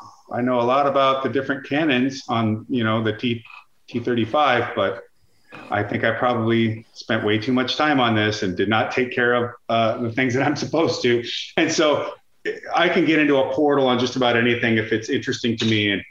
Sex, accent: male, American